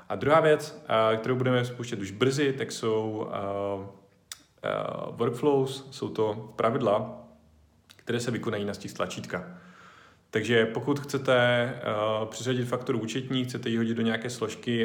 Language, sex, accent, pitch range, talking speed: Czech, male, native, 105-120 Hz, 140 wpm